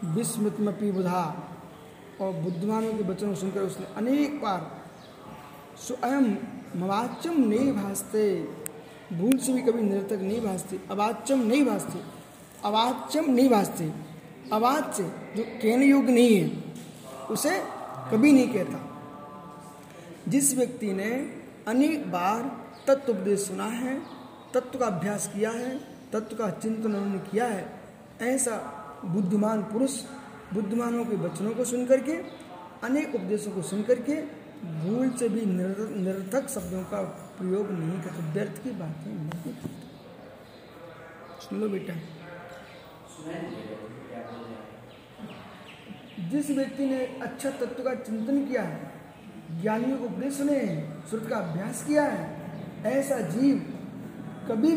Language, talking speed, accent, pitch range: Hindi, 120 wpm, native, 180-250 Hz